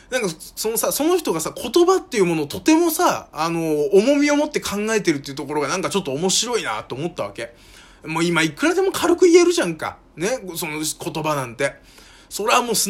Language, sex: Japanese, male